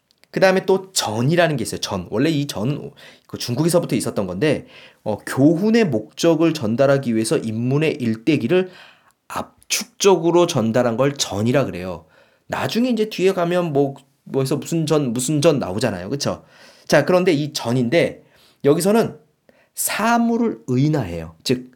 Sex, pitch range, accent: male, 110-175 Hz, native